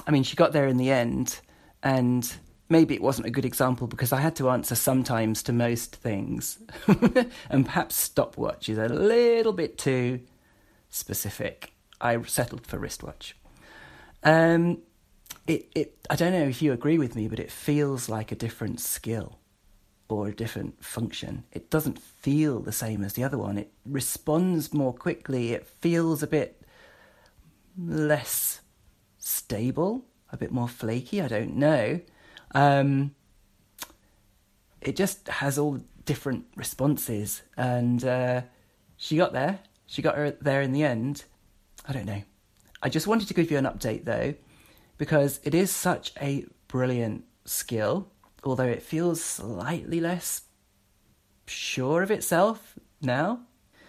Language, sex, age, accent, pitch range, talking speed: English, male, 40-59, British, 115-155 Hz, 145 wpm